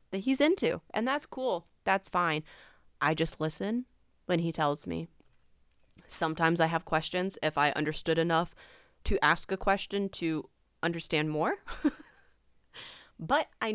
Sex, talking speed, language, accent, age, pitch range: female, 140 wpm, English, American, 20-39, 155-205 Hz